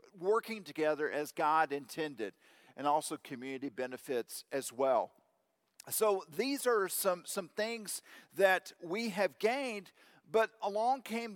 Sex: male